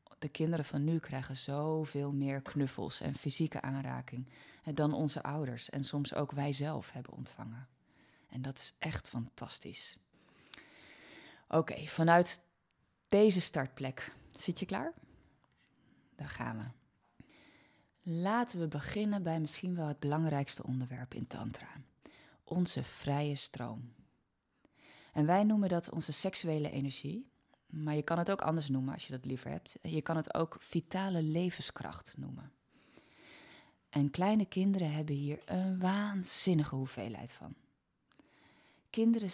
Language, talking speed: Dutch, 130 wpm